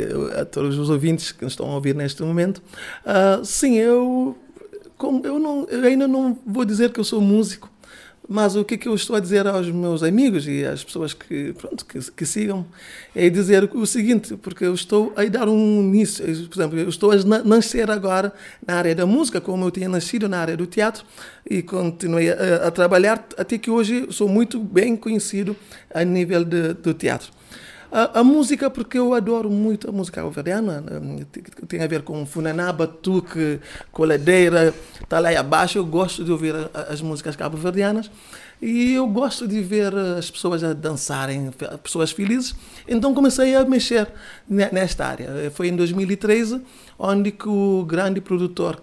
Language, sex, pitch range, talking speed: Portuguese, male, 175-225 Hz, 180 wpm